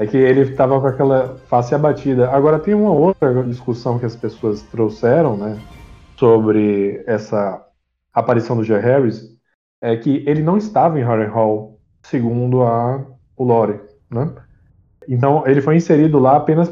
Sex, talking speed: male, 155 wpm